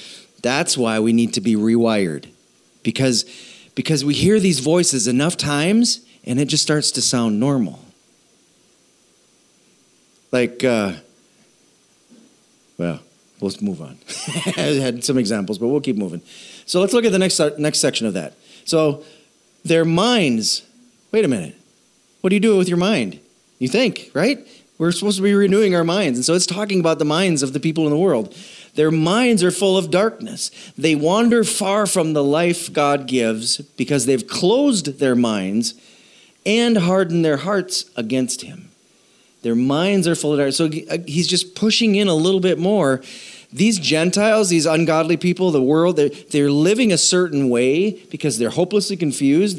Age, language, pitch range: 40-59, English, 135-195 Hz